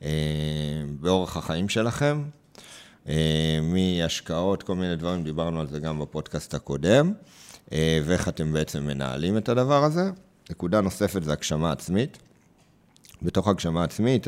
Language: Hebrew